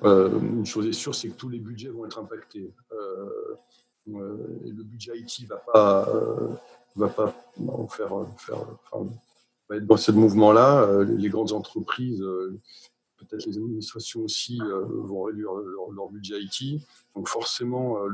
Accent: French